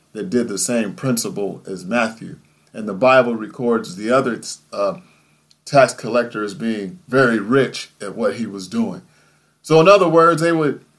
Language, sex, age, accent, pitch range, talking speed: English, male, 40-59, American, 120-155 Hz, 170 wpm